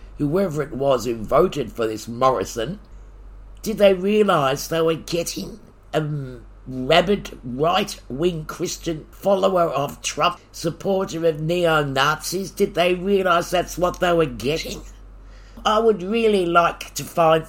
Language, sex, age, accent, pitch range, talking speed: English, male, 50-69, British, 125-175 Hz, 130 wpm